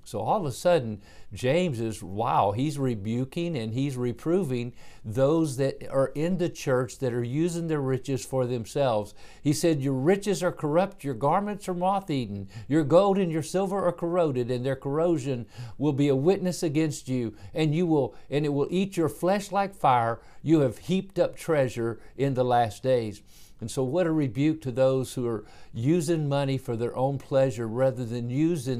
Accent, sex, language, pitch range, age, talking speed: American, male, English, 120-160 Hz, 50-69, 190 wpm